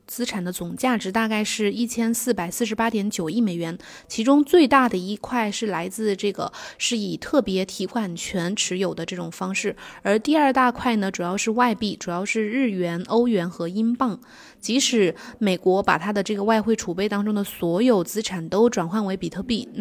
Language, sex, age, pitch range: Chinese, female, 20-39, 190-235 Hz